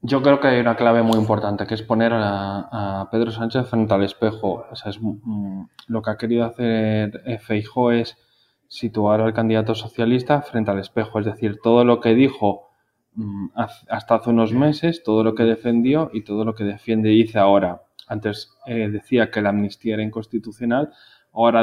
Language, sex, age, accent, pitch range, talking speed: Spanish, male, 20-39, Spanish, 105-120 Hz, 180 wpm